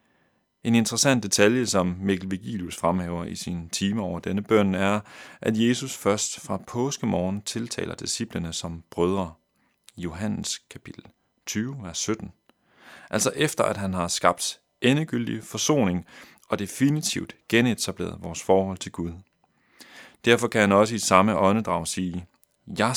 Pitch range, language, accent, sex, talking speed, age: 95-115 Hz, Danish, native, male, 140 wpm, 30-49